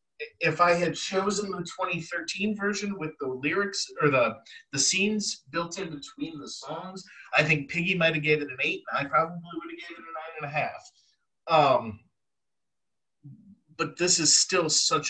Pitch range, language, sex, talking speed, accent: 130-170 Hz, English, male, 175 wpm, American